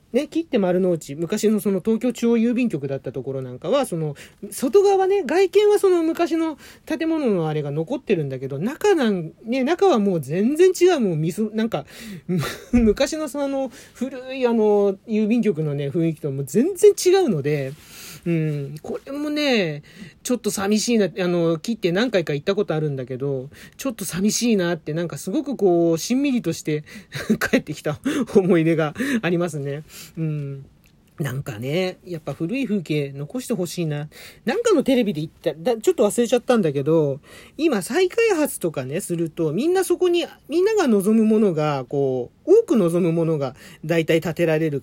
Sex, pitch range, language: male, 160-255 Hz, Japanese